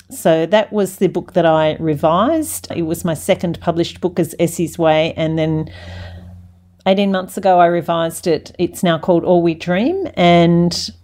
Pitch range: 165-210 Hz